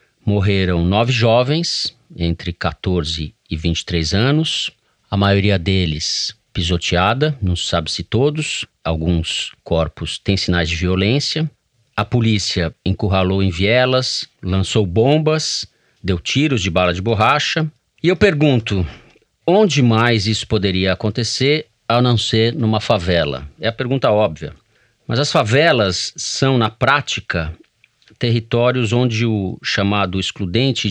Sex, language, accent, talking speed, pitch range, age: male, Portuguese, Brazilian, 120 wpm, 90-135 Hz, 50-69